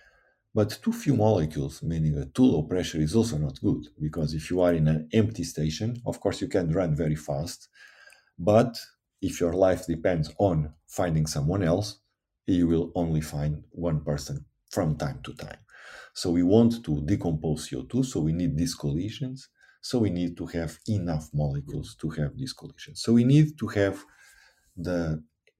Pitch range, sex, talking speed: 80-115 Hz, male, 175 wpm